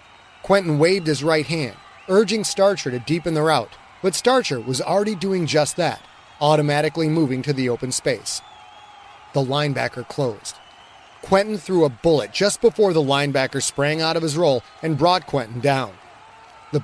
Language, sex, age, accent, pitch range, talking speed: English, male, 30-49, American, 135-180 Hz, 160 wpm